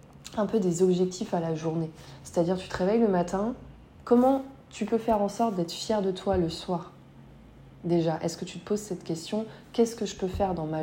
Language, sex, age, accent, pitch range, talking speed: French, female, 20-39, French, 170-210 Hz, 220 wpm